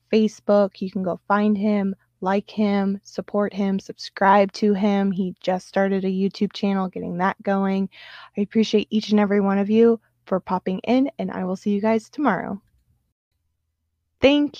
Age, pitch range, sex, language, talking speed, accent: 20-39, 195-230 Hz, female, English, 170 wpm, American